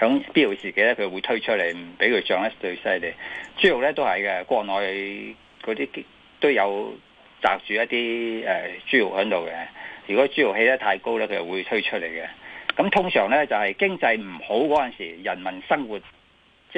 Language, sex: Chinese, male